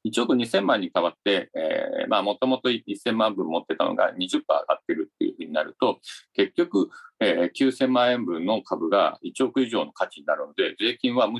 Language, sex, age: Japanese, male, 50-69